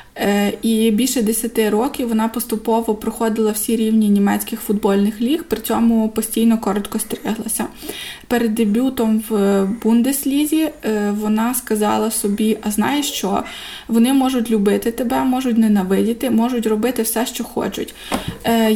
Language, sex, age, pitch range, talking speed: Ukrainian, female, 20-39, 215-245 Hz, 120 wpm